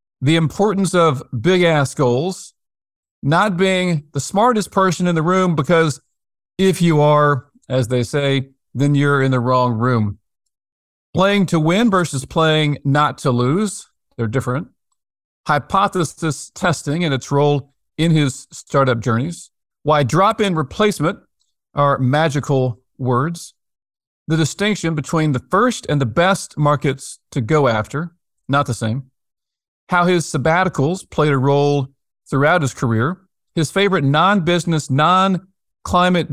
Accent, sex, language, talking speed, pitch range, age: American, male, English, 130 wpm, 130-170 Hz, 50-69